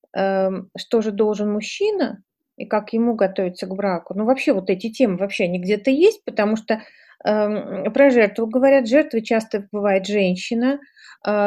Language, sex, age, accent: Russian, female, 30-49, native